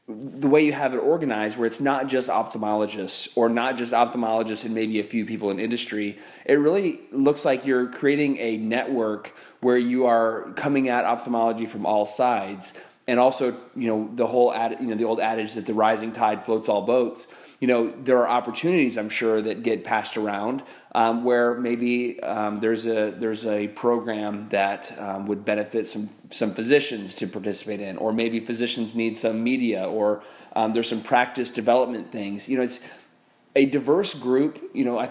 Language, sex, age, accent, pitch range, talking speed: English, male, 30-49, American, 110-125 Hz, 190 wpm